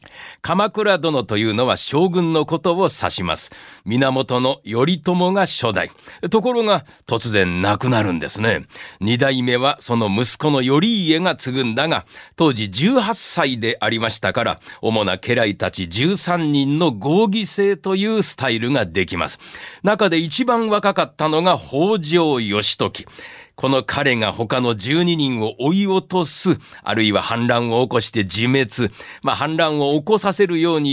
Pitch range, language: 115-180 Hz, Japanese